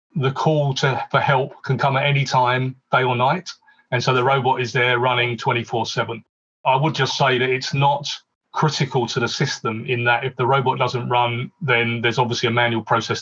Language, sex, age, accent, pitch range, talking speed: English, male, 30-49, British, 120-140 Hz, 210 wpm